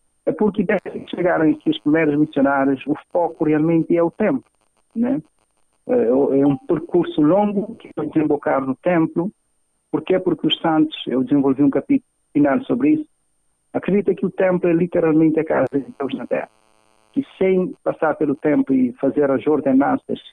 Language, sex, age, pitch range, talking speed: Portuguese, male, 60-79, 135-195 Hz, 170 wpm